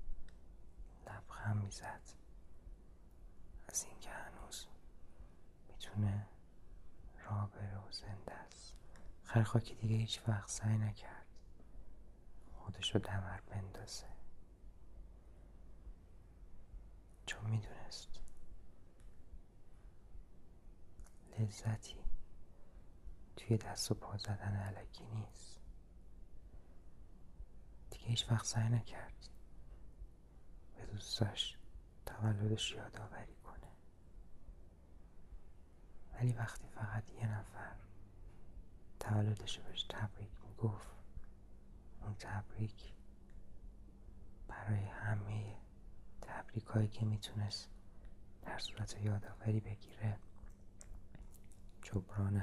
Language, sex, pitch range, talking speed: Persian, male, 85-105 Hz, 70 wpm